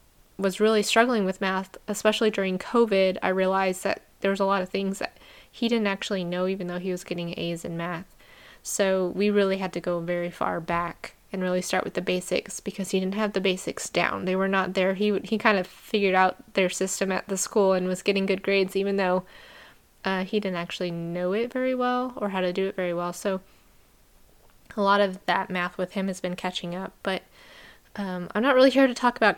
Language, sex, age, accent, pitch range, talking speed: English, female, 10-29, American, 185-205 Hz, 225 wpm